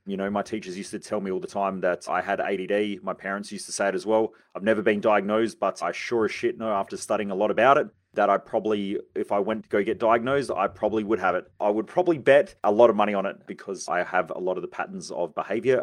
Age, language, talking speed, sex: 30-49, English, 280 wpm, male